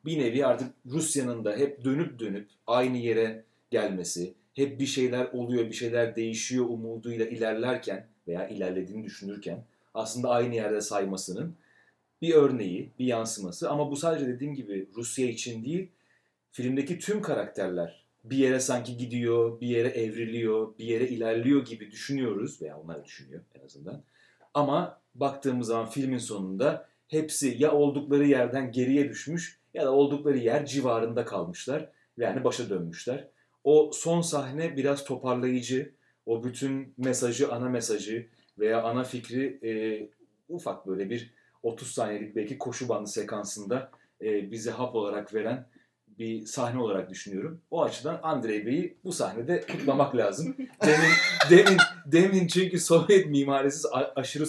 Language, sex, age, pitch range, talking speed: English, male, 40-59, 115-140 Hz, 140 wpm